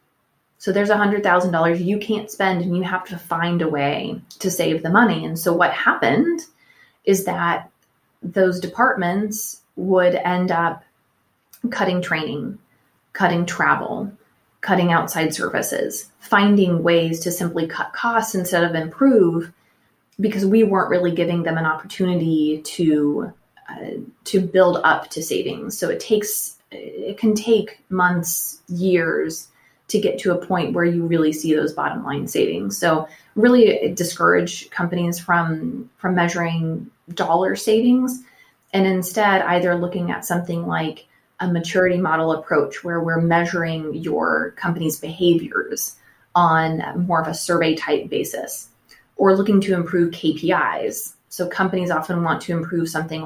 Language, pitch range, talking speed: English, 165-195 Hz, 140 wpm